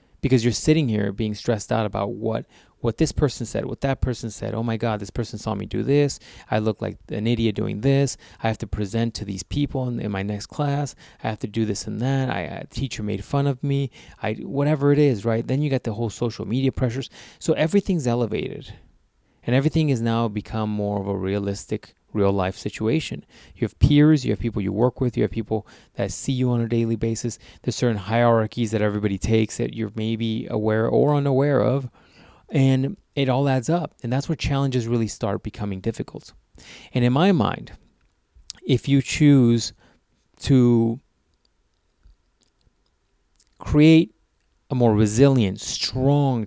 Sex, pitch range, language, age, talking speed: male, 105-135 Hz, English, 30-49, 185 wpm